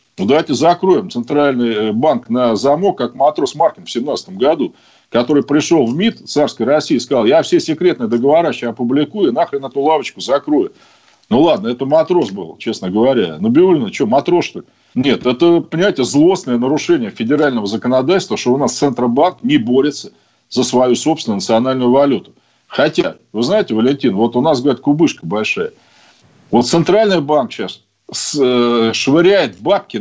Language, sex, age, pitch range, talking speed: Russian, male, 40-59, 140-225 Hz, 155 wpm